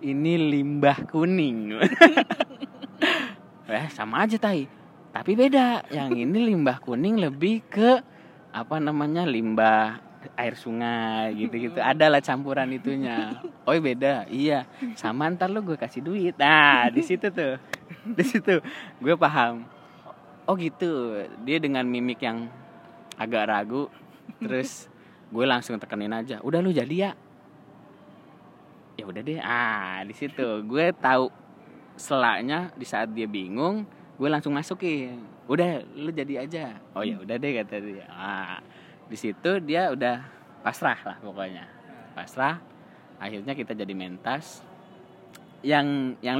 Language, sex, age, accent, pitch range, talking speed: English, male, 20-39, Indonesian, 115-170 Hz, 130 wpm